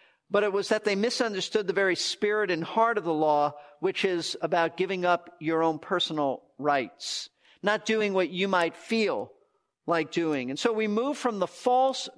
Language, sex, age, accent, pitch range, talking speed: English, male, 50-69, American, 155-215 Hz, 185 wpm